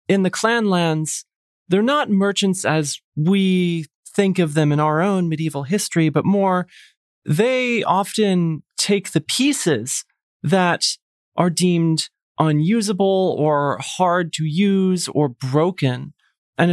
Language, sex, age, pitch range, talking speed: English, male, 30-49, 150-195 Hz, 125 wpm